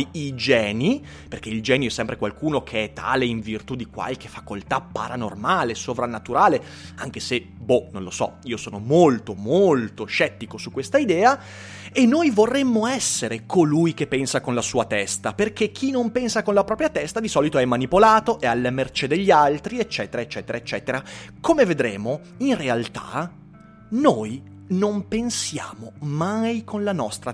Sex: male